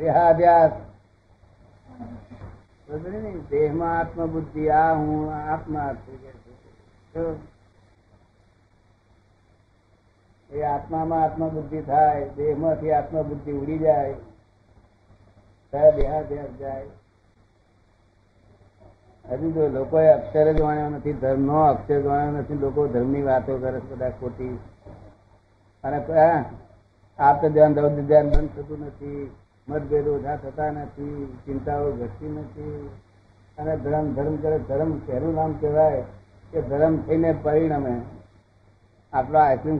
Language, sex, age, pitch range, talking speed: Gujarati, male, 60-79, 105-155 Hz, 60 wpm